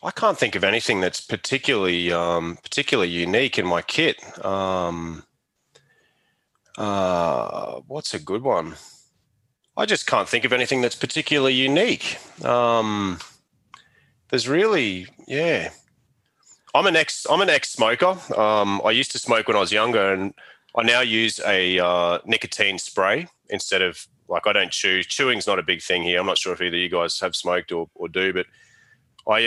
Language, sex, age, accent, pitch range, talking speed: English, male, 30-49, Australian, 85-105 Hz, 165 wpm